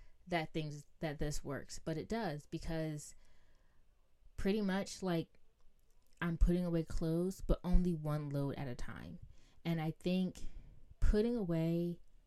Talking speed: 135 wpm